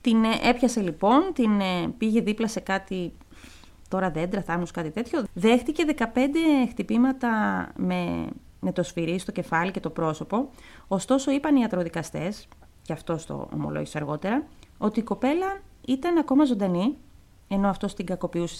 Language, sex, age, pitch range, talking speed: Greek, female, 30-49, 190-285 Hz, 140 wpm